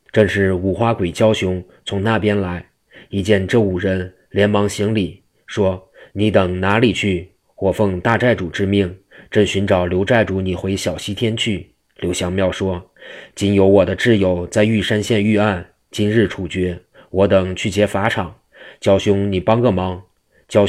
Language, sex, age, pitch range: Chinese, male, 20-39, 90-105 Hz